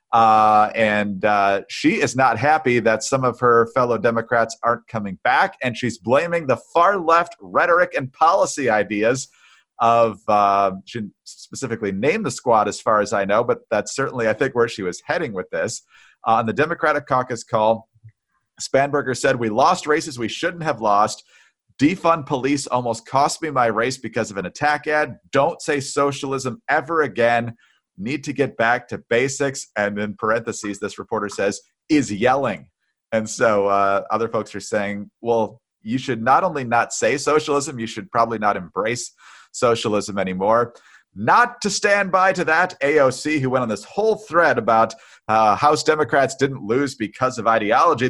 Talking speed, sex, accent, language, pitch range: 175 wpm, male, American, English, 110-145 Hz